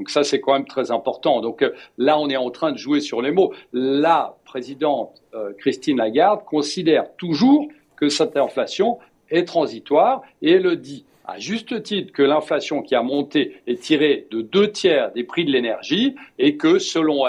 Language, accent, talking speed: French, French, 180 wpm